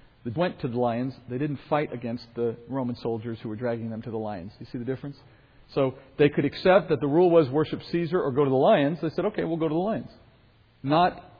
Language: English